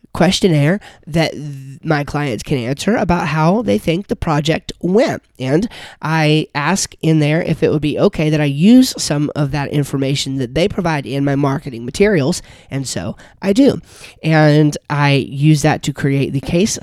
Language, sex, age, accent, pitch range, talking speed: English, male, 30-49, American, 140-165 Hz, 175 wpm